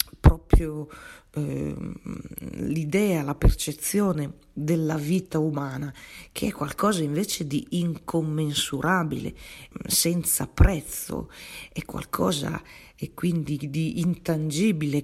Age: 40-59